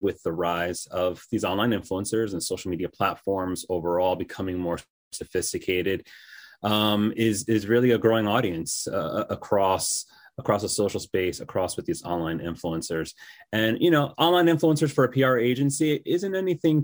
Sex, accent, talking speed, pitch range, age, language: male, American, 155 wpm, 90-120 Hz, 30-49, English